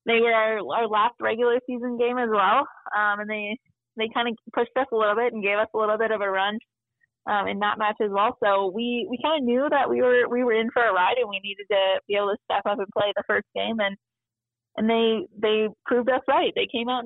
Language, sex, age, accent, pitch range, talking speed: English, female, 20-39, American, 195-230 Hz, 265 wpm